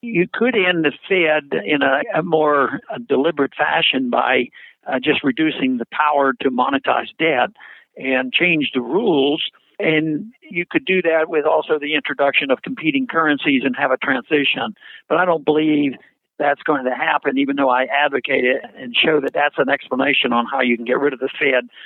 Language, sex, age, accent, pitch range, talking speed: English, male, 60-79, American, 135-165 Hz, 185 wpm